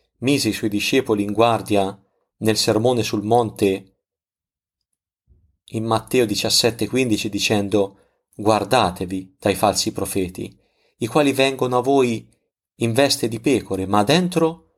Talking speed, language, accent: 120 wpm, Italian, native